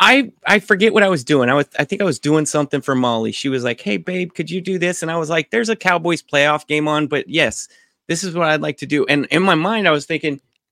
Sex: male